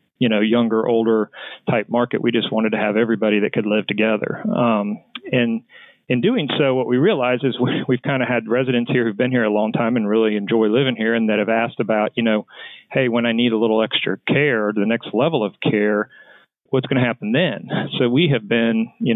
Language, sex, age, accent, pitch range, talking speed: English, male, 40-59, American, 110-125 Hz, 220 wpm